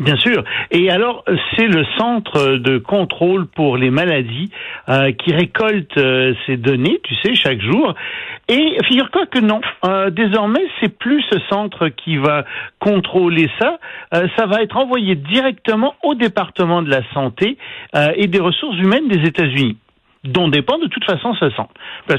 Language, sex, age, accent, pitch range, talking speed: French, male, 60-79, French, 135-215 Hz, 170 wpm